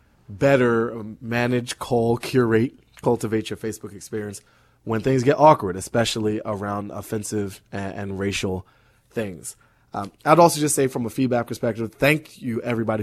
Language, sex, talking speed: English, male, 145 wpm